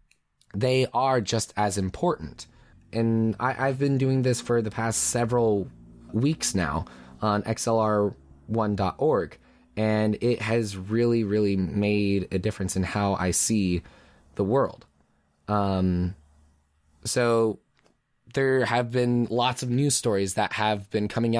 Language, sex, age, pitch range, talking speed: English, male, 20-39, 105-130 Hz, 125 wpm